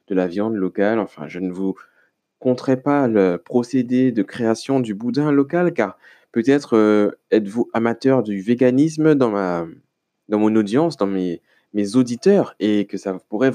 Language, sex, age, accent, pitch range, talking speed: French, male, 20-39, French, 100-135 Hz, 165 wpm